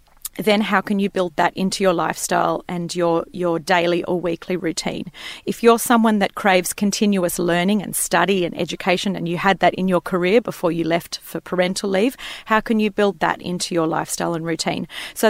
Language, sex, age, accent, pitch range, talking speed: English, female, 40-59, Australian, 180-215 Hz, 200 wpm